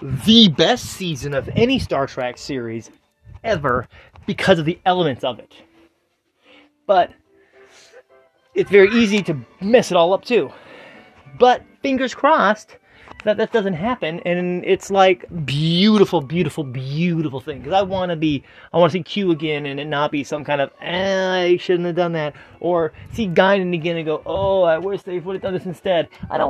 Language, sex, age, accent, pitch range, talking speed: English, male, 30-49, American, 155-205 Hz, 180 wpm